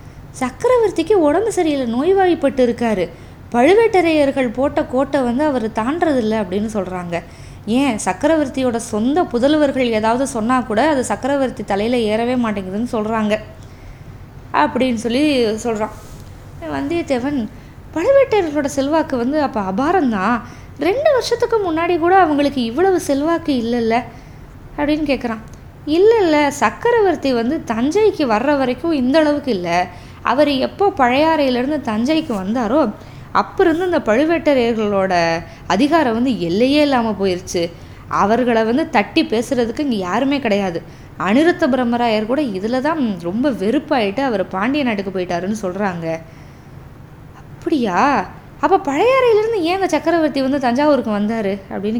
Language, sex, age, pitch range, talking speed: Tamil, female, 20-39, 210-300 Hz, 110 wpm